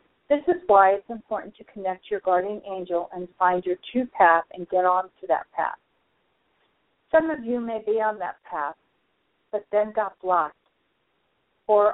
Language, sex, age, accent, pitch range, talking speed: English, female, 50-69, American, 185-230 Hz, 170 wpm